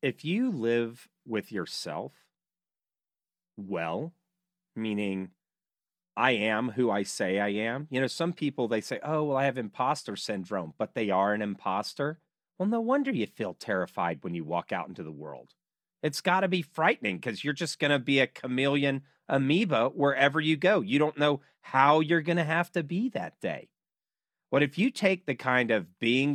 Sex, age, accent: male, 40-59, American